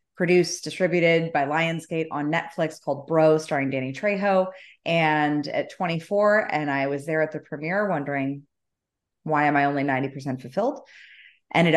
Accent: American